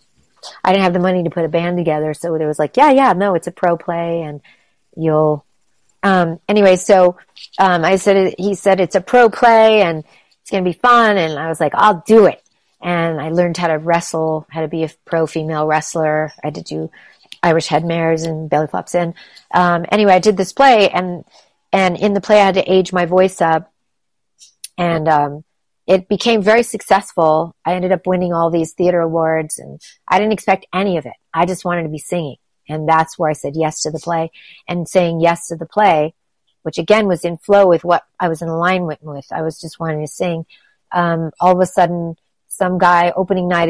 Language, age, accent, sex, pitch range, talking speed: English, 40-59, American, female, 160-185 Hz, 215 wpm